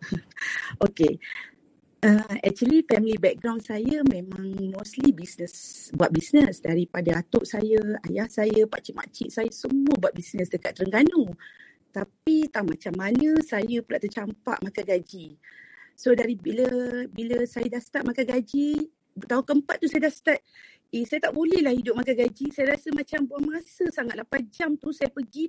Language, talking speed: Malay, 160 wpm